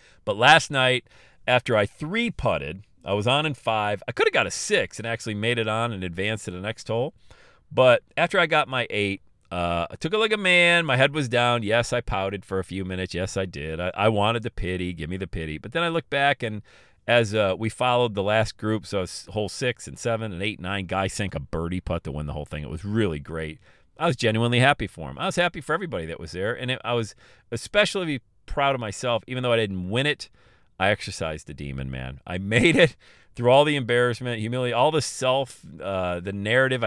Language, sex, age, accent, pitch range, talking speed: English, male, 40-59, American, 95-130 Hz, 240 wpm